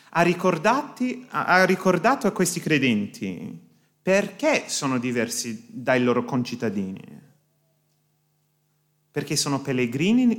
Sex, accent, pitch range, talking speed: male, native, 150-200 Hz, 85 wpm